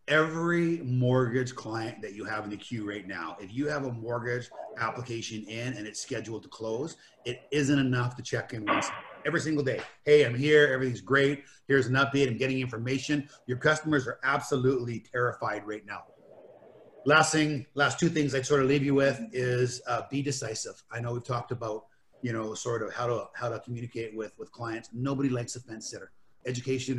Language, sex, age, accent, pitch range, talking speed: English, male, 30-49, American, 110-135 Hz, 200 wpm